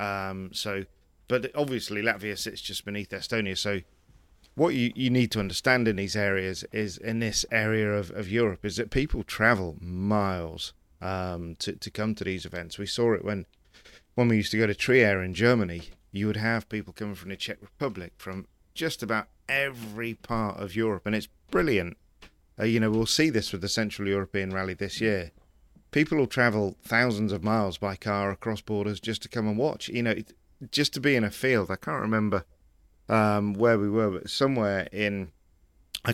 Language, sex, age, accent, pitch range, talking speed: English, male, 40-59, British, 95-115 Hz, 195 wpm